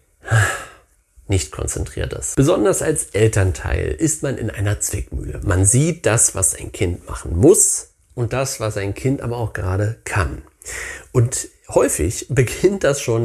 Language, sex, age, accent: German, male, 40-59, German